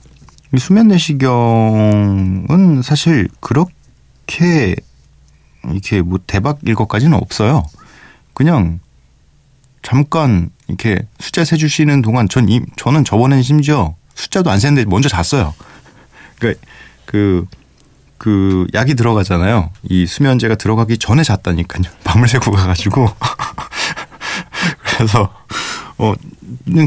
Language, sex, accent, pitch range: Korean, male, native, 90-135 Hz